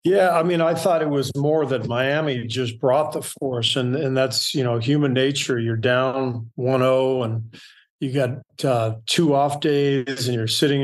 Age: 40-59